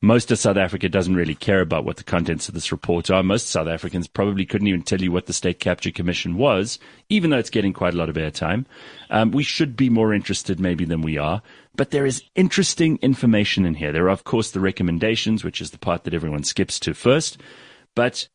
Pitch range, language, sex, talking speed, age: 90-120 Hz, English, male, 230 wpm, 30-49